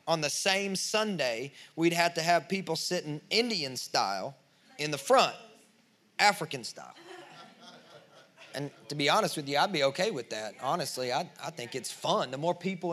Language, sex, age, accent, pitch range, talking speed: English, male, 30-49, American, 165-210 Hz, 170 wpm